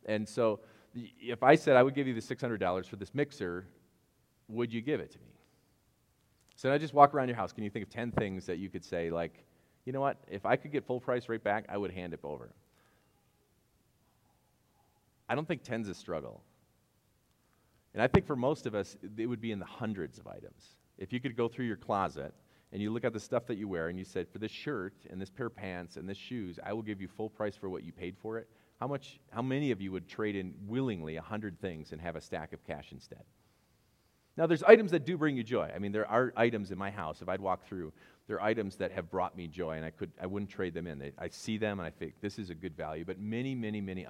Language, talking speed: English, 255 wpm